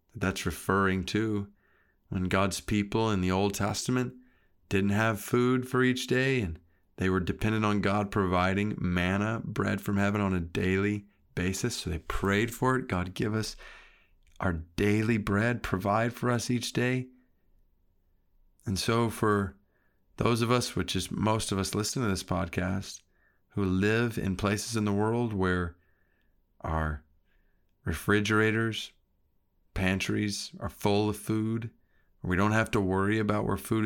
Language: English